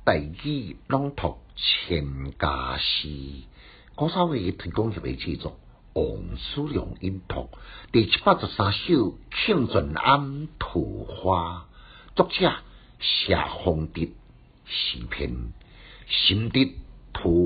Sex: male